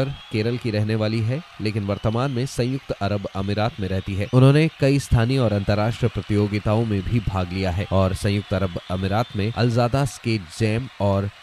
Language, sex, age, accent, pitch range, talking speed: Hindi, male, 20-39, native, 100-120 Hz, 180 wpm